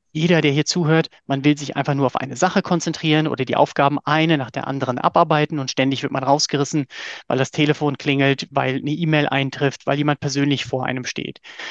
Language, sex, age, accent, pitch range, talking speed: German, male, 30-49, German, 135-155 Hz, 205 wpm